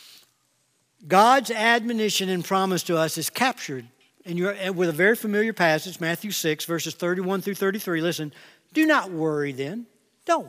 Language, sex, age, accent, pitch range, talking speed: English, male, 60-79, American, 170-255 Hz, 145 wpm